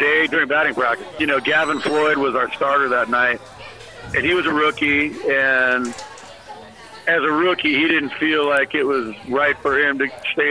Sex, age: male, 50-69